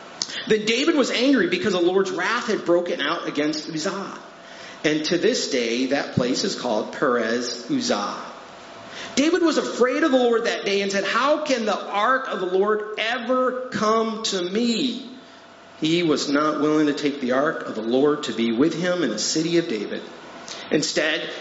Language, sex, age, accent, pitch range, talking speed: English, male, 40-59, American, 155-220 Hz, 180 wpm